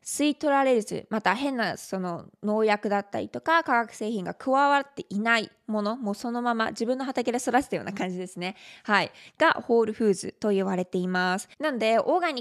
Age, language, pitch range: 20-39, Japanese, 195-245 Hz